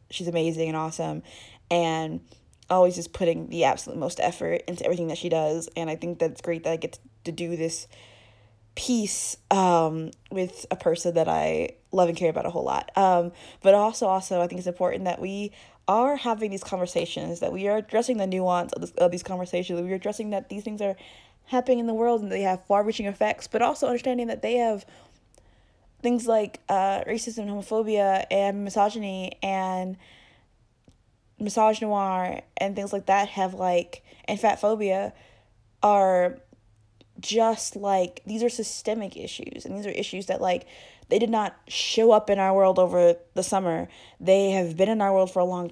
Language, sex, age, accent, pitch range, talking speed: English, female, 20-39, American, 175-220 Hz, 180 wpm